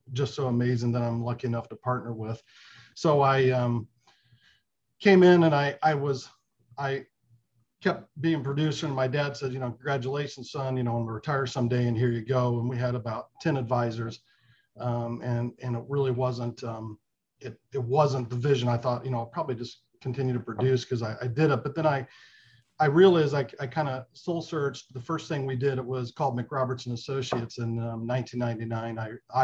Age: 40-59